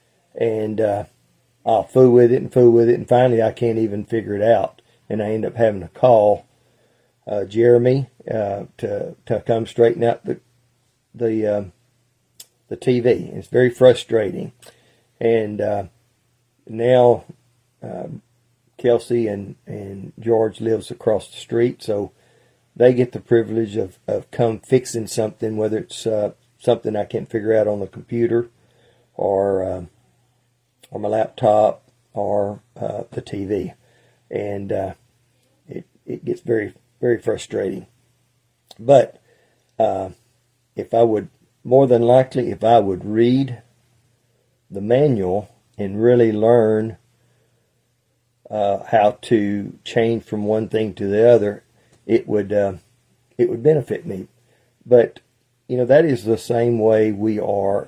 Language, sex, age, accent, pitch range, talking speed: English, male, 40-59, American, 105-120 Hz, 140 wpm